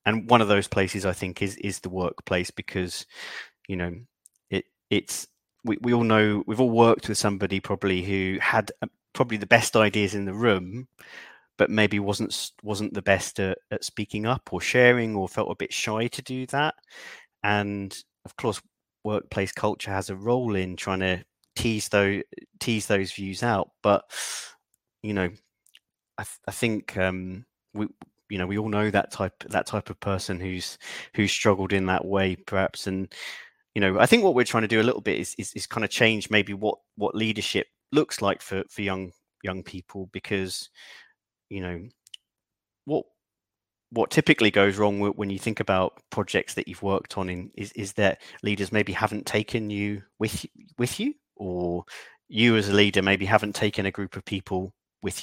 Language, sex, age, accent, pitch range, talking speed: English, male, 30-49, British, 95-110 Hz, 185 wpm